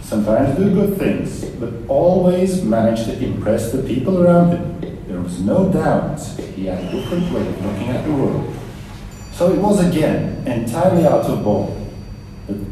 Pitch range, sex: 100-165 Hz, male